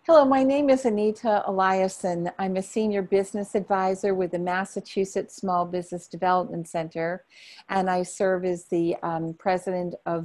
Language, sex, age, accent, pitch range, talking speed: English, female, 50-69, American, 175-200 Hz, 150 wpm